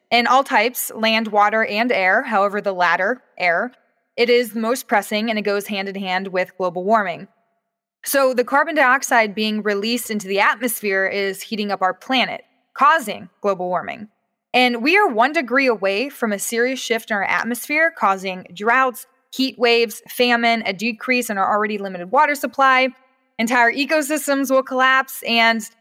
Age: 20-39